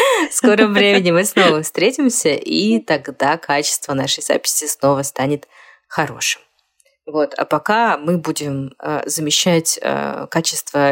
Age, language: 20-39, Russian